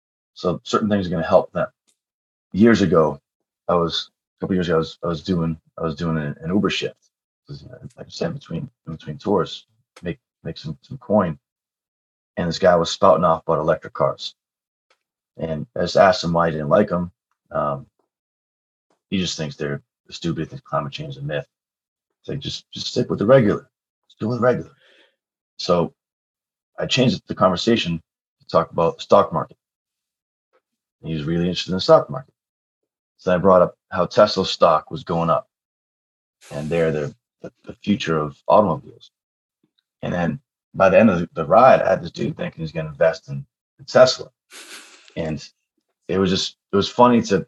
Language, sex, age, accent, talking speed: English, male, 30-49, American, 190 wpm